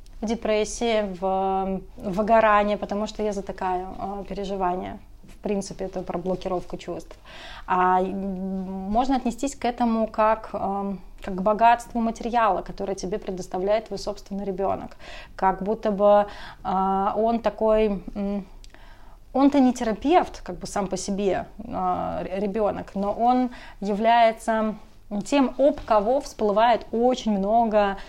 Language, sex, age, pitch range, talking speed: Russian, female, 20-39, 195-235 Hz, 115 wpm